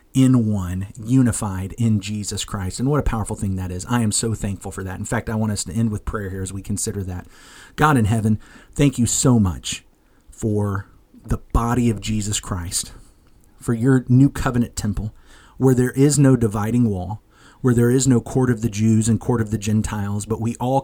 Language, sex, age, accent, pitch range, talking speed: English, male, 30-49, American, 100-125 Hz, 210 wpm